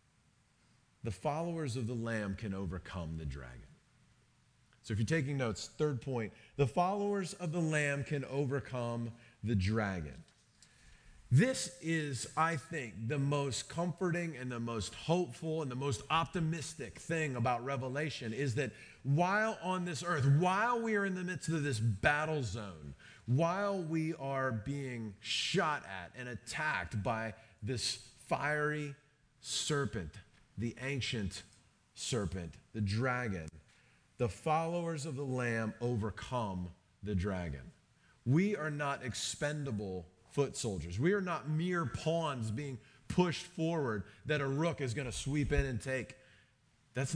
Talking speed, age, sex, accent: 140 wpm, 40-59, male, American